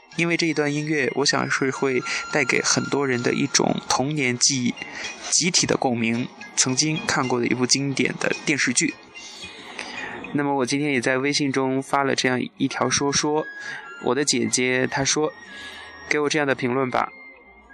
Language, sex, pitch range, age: Chinese, male, 125-155 Hz, 20-39